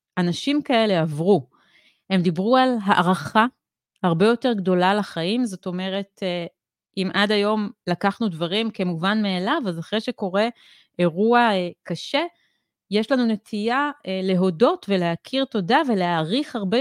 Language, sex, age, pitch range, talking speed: Hebrew, female, 30-49, 185-235 Hz, 120 wpm